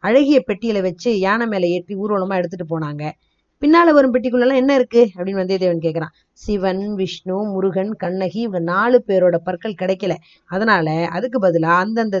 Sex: female